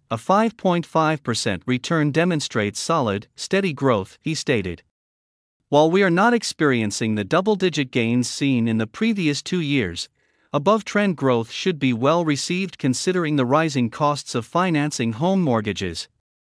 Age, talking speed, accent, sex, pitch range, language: 50-69, 130 wpm, American, male, 115-175 Hz, English